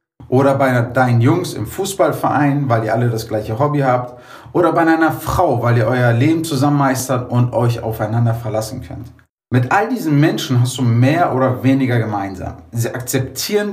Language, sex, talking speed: German, male, 175 wpm